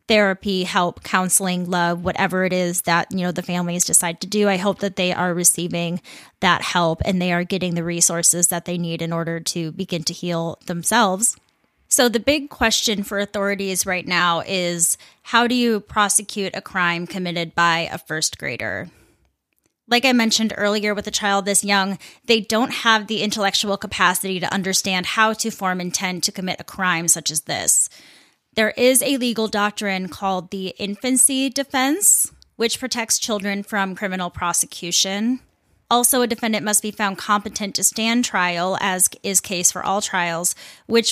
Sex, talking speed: female, 175 wpm